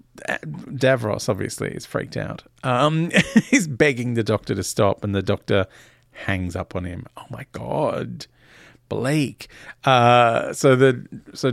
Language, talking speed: English, 140 wpm